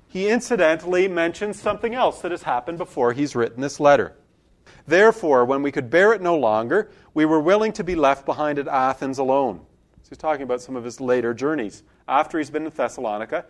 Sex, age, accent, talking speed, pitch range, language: male, 40-59, American, 195 wpm, 135-180 Hz, English